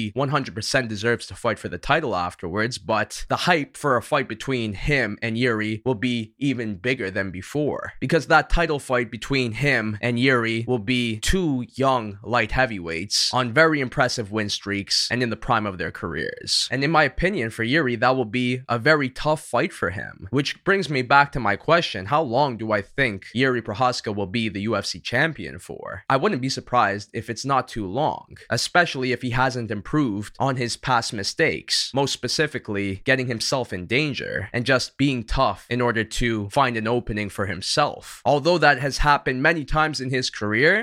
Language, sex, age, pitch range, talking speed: English, male, 20-39, 110-135 Hz, 190 wpm